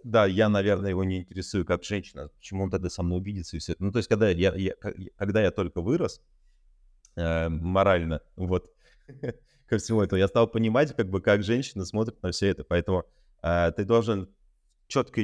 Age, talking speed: 30-49, 180 wpm